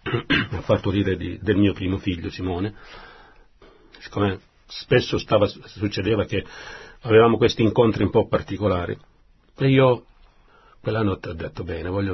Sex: male